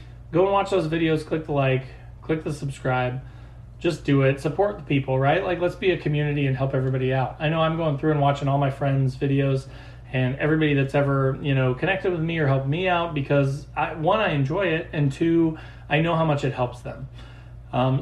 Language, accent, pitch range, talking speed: English, American, 135-165 Hz, 220 wpm